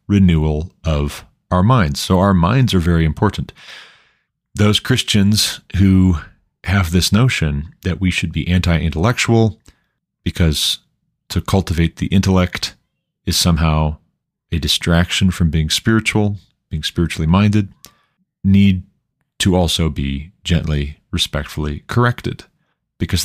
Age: 40-59